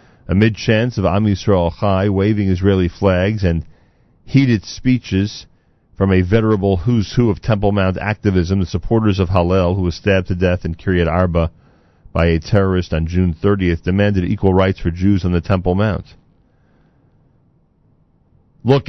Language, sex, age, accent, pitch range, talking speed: English, male, 40-59, American, 85-105 Hz, 155 wpm